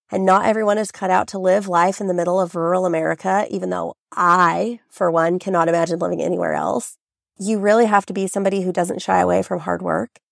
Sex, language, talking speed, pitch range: female, English, 220 wpm, 180-210 Hz